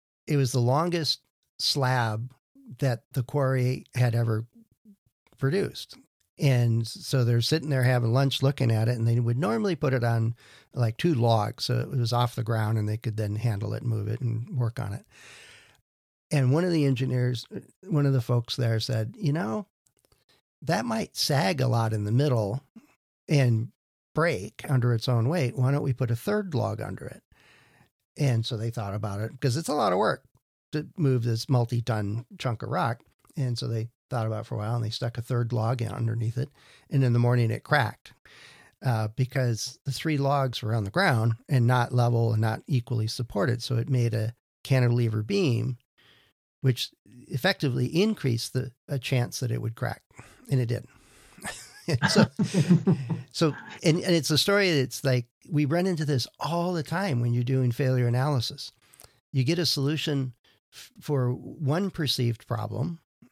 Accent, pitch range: American, 115-140 Hz